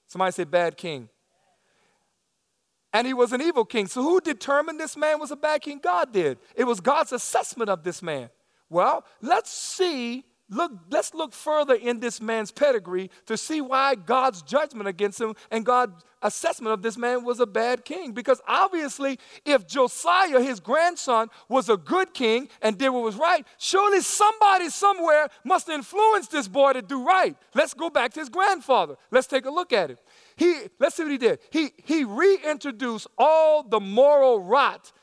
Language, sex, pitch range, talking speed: English, male, 225-310 Hz, 180 wpm